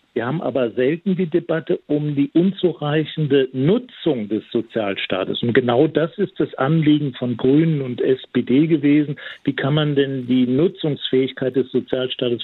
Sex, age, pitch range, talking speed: male, 50-69, 120-140 Hz, 150 wpm